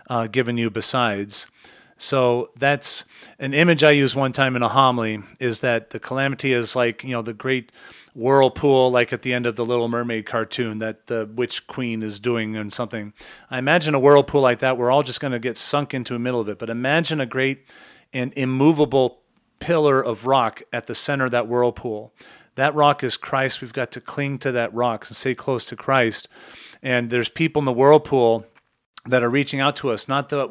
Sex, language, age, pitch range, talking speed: male, English, 40-59, 120-135 Hz, 210 wpm